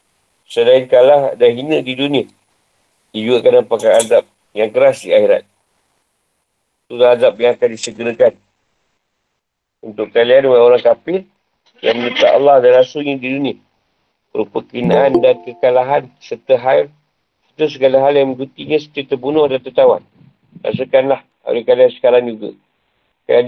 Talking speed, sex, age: 130 wpm, male, 50-69